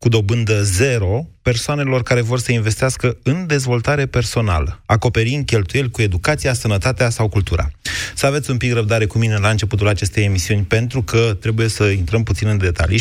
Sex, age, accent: male, 30-49, native